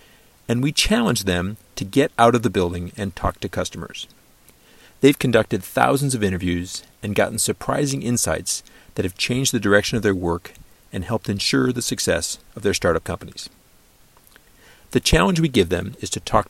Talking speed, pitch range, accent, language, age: 175 wpm, 95-125 Hz, American, English, 50-69